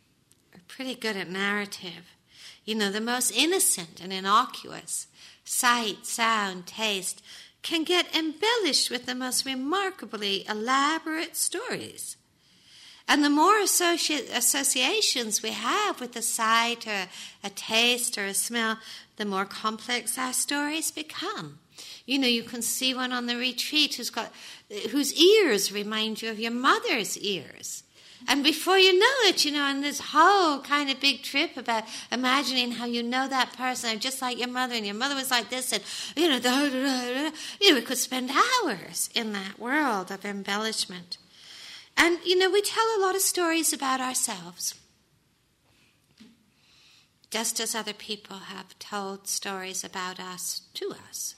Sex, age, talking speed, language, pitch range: female, 60-79, 150 wpm, English, 215-295 Hz